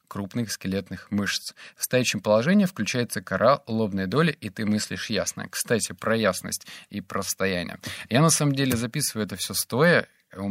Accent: native